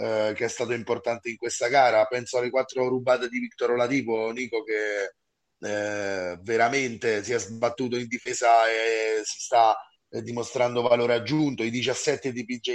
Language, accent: Italian, native